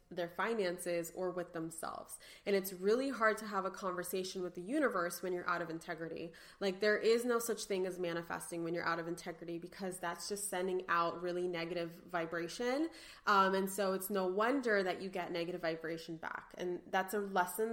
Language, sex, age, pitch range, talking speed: English, female, 20-39, 175-220 Hz, 195 wpm